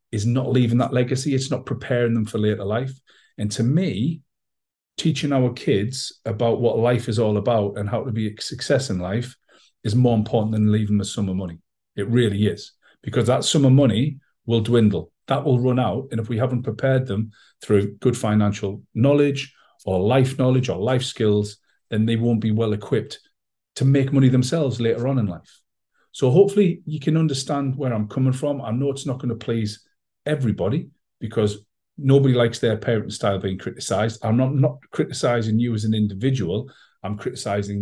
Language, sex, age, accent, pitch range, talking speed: English, male, 40-59, British, 105-130 Hz, 190 wpm